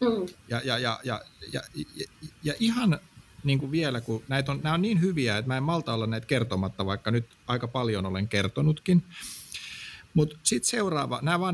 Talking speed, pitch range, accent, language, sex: 175 wpm, 105-155 Hz, native, Finnish, male